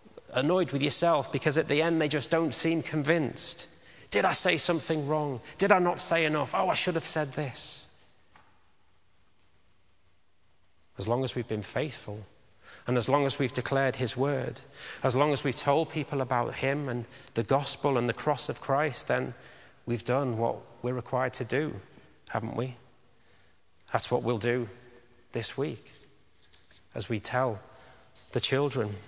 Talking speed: 165 wpm